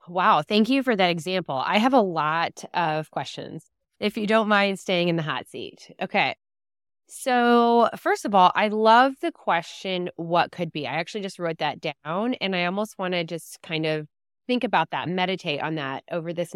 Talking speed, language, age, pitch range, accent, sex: 200 wpm, English, 20-39, 160-210 Hz, American, female